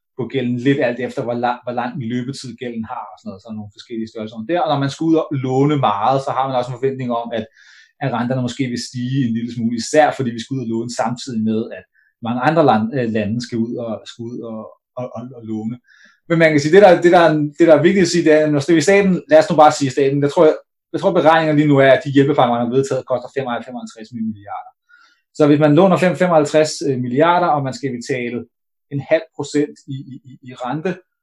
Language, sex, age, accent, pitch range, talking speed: Danish, male, 30-49, native, 125-155 Hz, 260 wpm